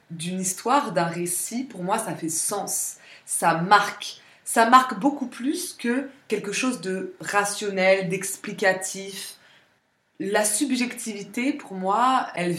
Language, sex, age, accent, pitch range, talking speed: French, female, 20-39, French, 170-220 Hz, 125 wpm